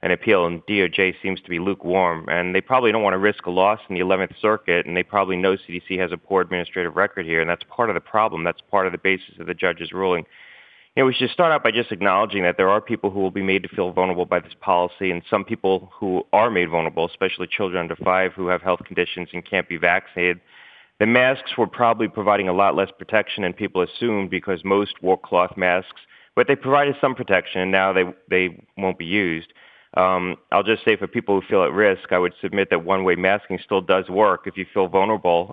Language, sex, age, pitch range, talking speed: English, male, 30-49, 90-105 Hz, 240 wpm